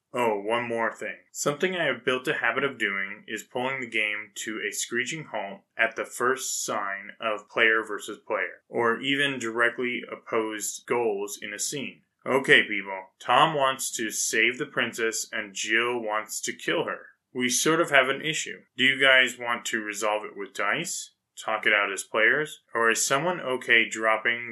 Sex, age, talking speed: male, 20-39, 185 wpm